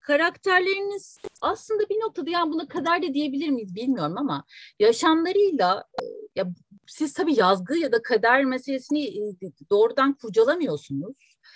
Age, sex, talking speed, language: 40-59, female, 120 wpm, Turkish